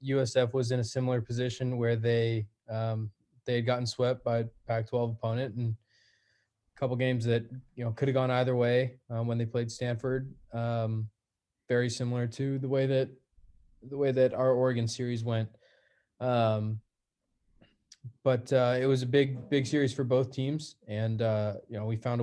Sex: male